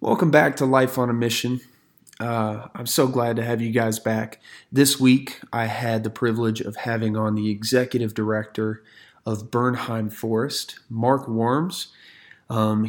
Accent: American